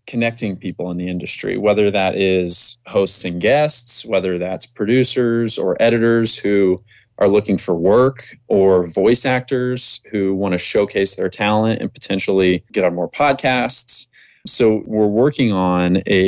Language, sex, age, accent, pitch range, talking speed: English, male, 20-39, American, 95-115 Hz, 150 wpm